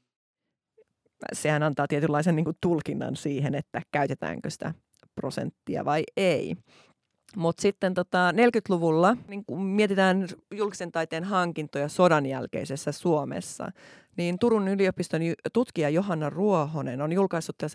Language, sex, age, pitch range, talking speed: Finnish, female, 30-49, 145-190 Hz, 110 wpm